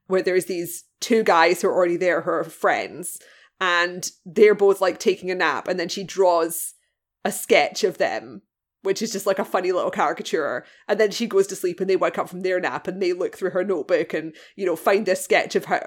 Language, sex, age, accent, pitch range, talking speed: English, female, 20-39, British, 180-225 Hz, 235 wpm